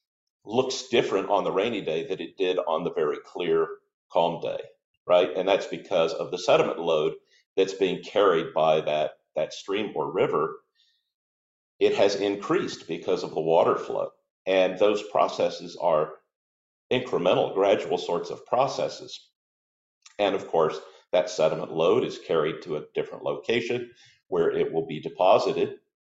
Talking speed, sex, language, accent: 150 wpm, male, English, American